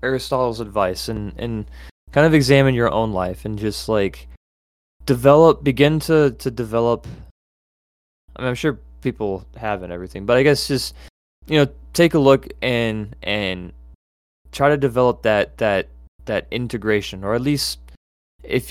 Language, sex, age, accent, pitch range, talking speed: English, male, 20-39, American, 90-120 Hz, 155 wpm